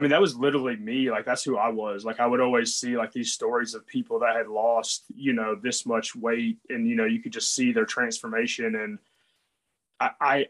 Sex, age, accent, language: male, 20-39, American, English